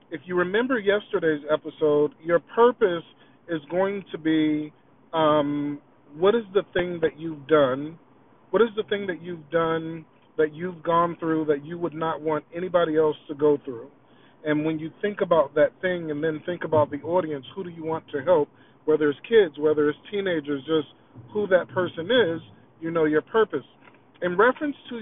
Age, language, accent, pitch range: 40-59, English, American, 150-180 Hz